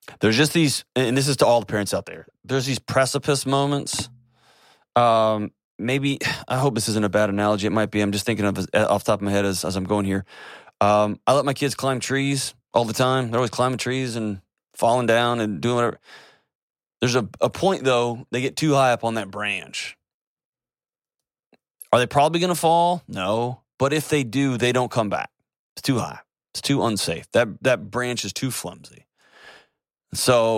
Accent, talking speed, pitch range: American, 205 wpm, 105-130 Hz